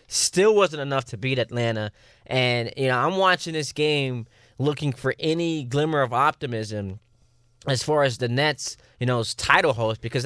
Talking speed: 170 wpm